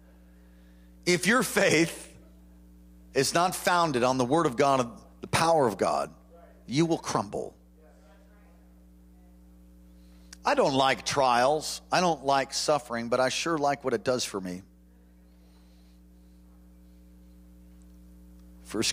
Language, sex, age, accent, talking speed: English, male, 40-59, American, 115 wpm